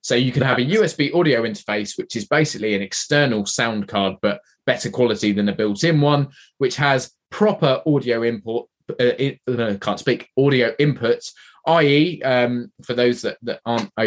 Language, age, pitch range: English, 20-39, 110-135 Hz